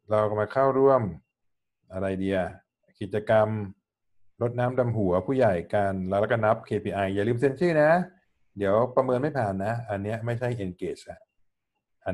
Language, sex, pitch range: Thai, male, 95-125 Hz